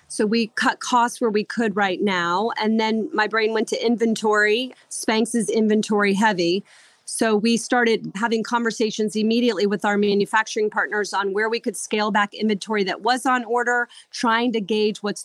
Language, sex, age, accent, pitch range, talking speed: English, female, 30-49, American, 195-230 Hz, 175 wpm